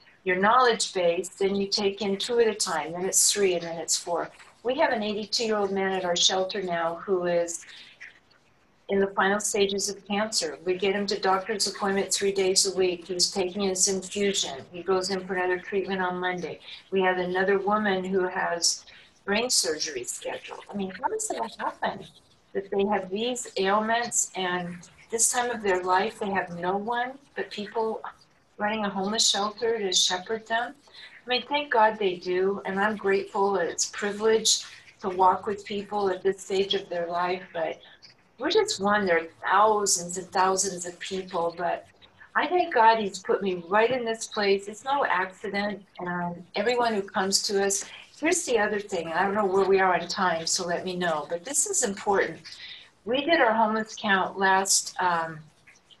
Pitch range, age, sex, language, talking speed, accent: 185-215 Hz, 50-69, female, English, 190 wpm, American